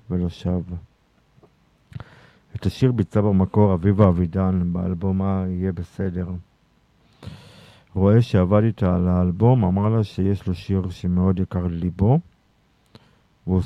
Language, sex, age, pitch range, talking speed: Hebrew, male, 50-69, 90-100 Hz, 110 wpm